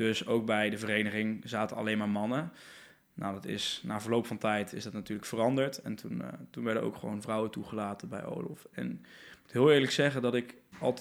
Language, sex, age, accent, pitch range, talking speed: Dutch, male, 20-39, Dutch, 110-125 Hz, 220 wpm